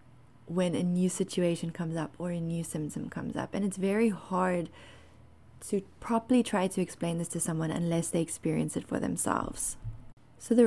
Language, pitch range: English, 160-195 Hz